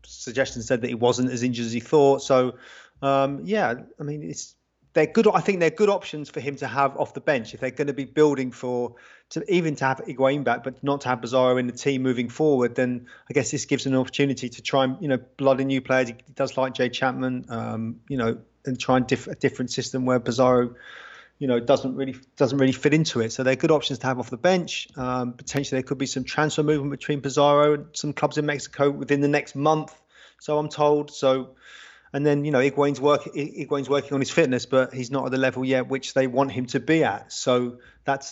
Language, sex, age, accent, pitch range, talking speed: English, male, 30-49, British, 125-140 Hz, 245 wpm